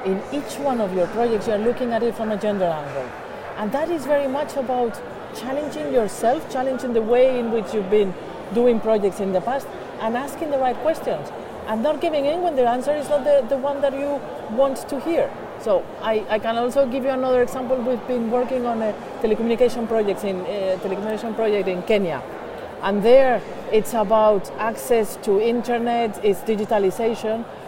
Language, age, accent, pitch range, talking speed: English, 40-59, Spanish, 215-265 Hz, 190 wpm